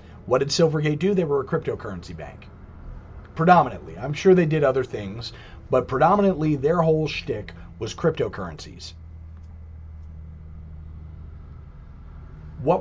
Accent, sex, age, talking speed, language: American, male, 40-59, 110 wpm, English